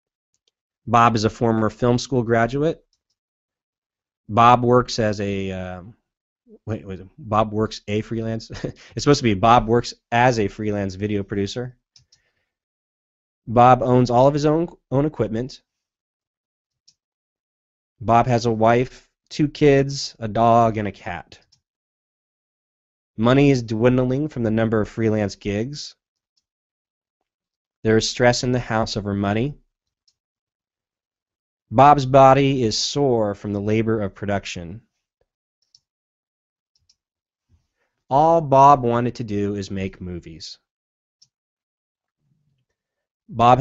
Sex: male